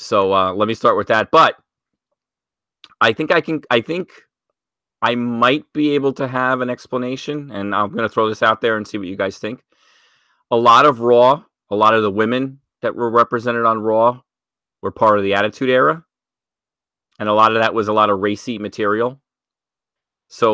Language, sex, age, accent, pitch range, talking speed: English, male, 30-49, American, 110-130 Hz, 200 wpm